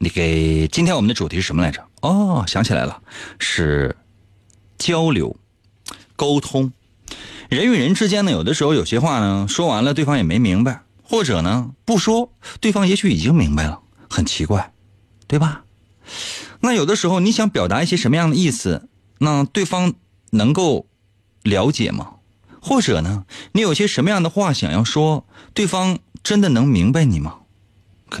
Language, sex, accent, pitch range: Chinese, male, native, 100-160 Hz